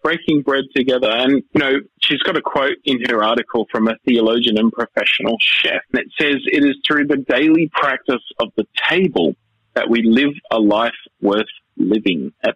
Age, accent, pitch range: 30-49, Australian, 110-140 Hz